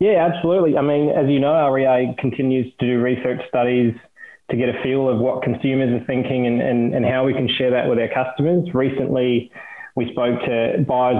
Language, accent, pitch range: English, Australian, 125-135 Hz